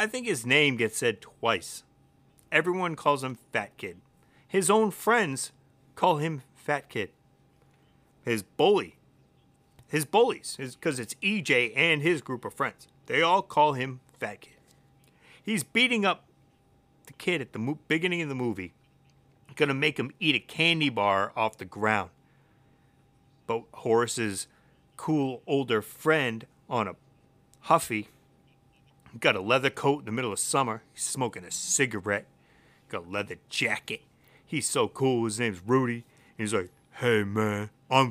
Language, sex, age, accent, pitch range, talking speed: English, male, 30-49, American, 115-150 Hz, 150 wpm